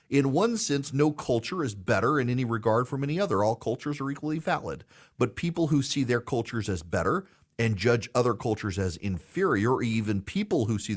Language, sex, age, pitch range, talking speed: English, male, 40-59, 100-140 Hz, 200 wpm